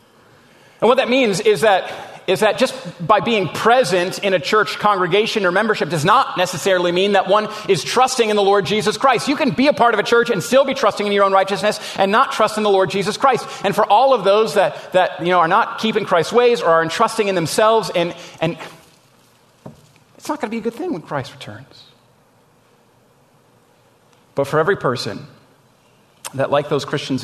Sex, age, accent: male, 40-59, American